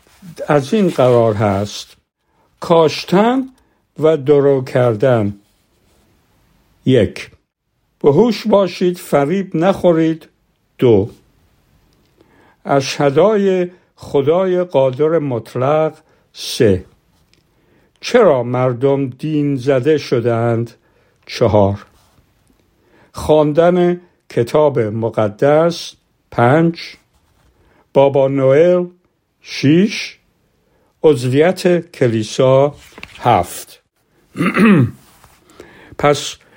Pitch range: 130-170 Hz